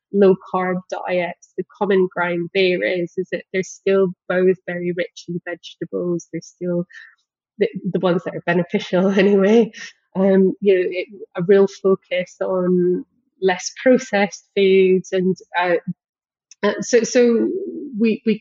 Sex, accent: female, British